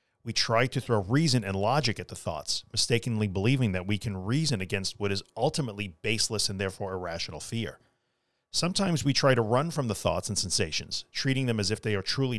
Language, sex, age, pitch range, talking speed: English, male, 40-59, 100-130 Hz, 205 wpm